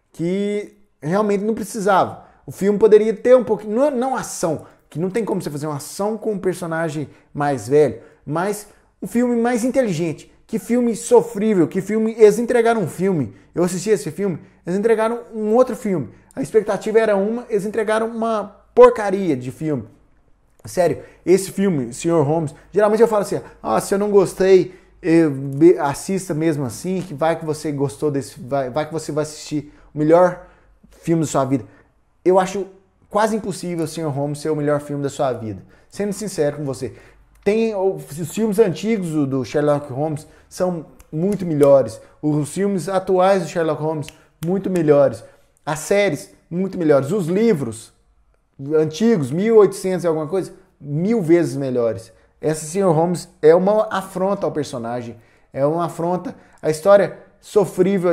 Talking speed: 160 wpm